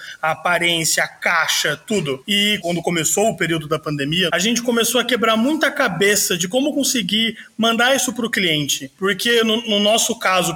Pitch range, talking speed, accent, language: 175-225 Hz, 180 wpm, Brazilian, Portuguese